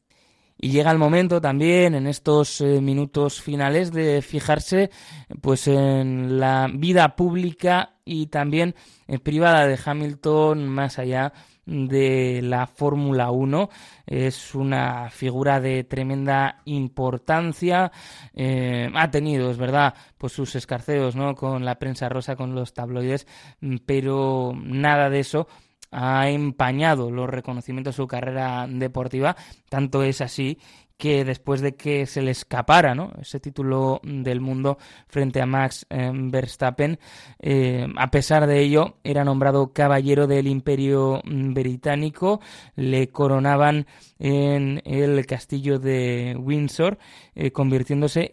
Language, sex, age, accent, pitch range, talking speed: Spanish, male, 20-39, Spanish, 130-145 Hz, 125 wpm